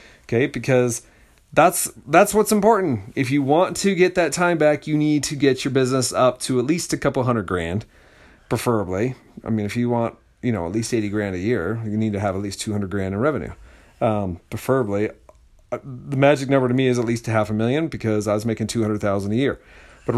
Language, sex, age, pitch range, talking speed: English, male, 40-59, 110-135 Hz, 225 wpm